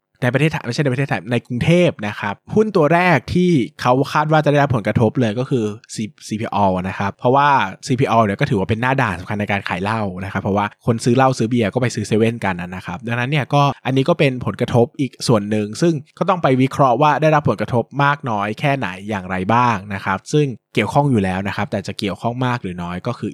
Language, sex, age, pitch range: Thai, male, 20-39, 100-135 Hz